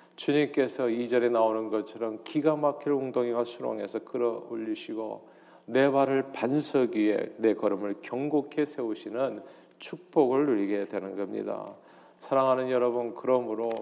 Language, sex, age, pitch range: Korean, male, 40-59, 120-145 Hz